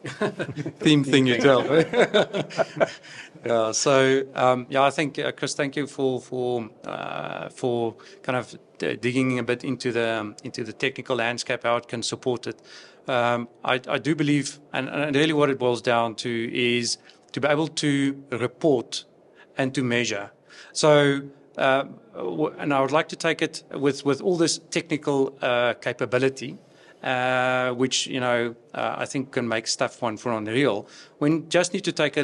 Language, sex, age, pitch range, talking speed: English, male, 40-59, 120-145 Hz, 175 wpm